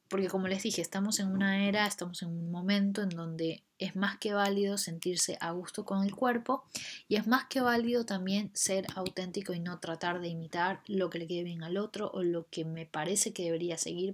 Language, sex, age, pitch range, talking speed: Spanish, female, 20-39, 175-210 Hz, 220 wpm